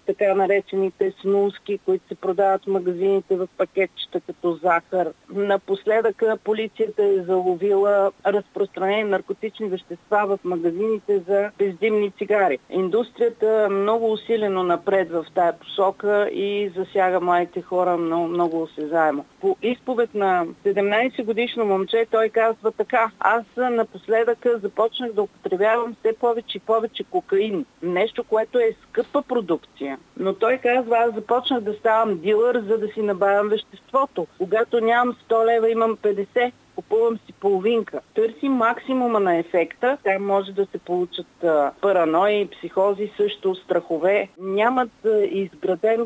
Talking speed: 125 wpm